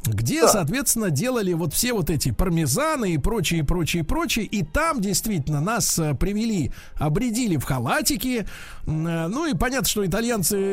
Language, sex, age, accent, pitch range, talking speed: Russian, male, 50-69, native, 155-220 Hz, 140 wpm